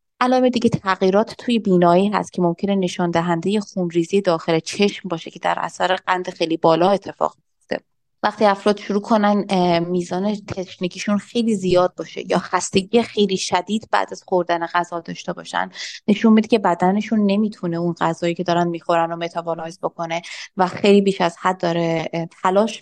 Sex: female